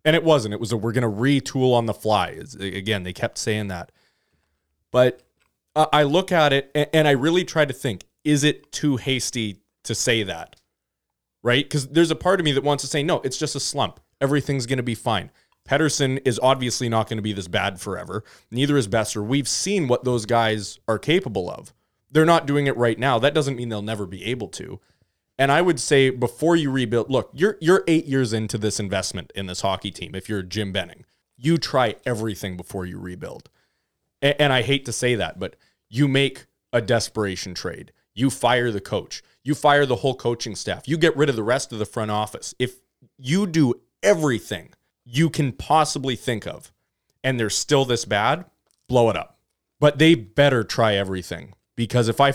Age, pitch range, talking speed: 20-39, 105-140 Hz, 205 wpm